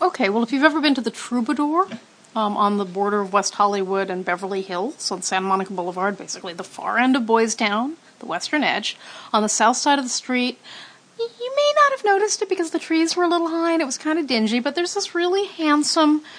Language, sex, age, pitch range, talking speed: English, female, 40-59, 195-295 Hz, 235 wpm